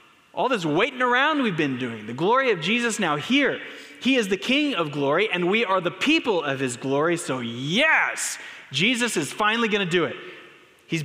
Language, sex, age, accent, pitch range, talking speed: English, male, 30-49, American, 135-200 Hz, 200 wpm